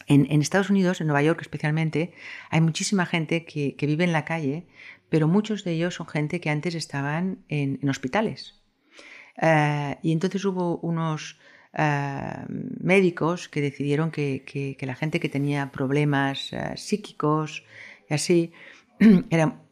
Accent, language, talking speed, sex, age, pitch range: Spanish, Spanish, 155 wpm, female, 50-69, 130-160 Hz